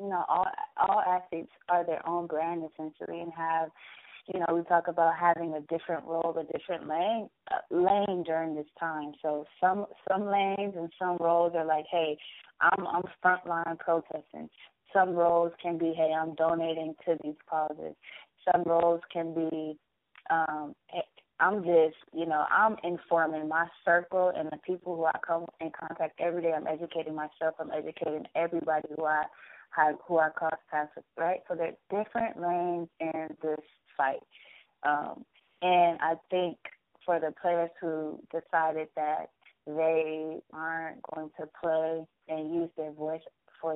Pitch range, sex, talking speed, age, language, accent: 160-175 Hz, female, 160 wpm, 20-39, English, American